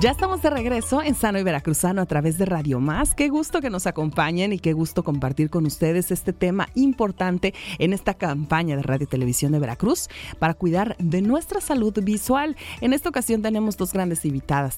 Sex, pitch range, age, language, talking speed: female, 155-220 Hz, 30-49, Spanish, 200 wpm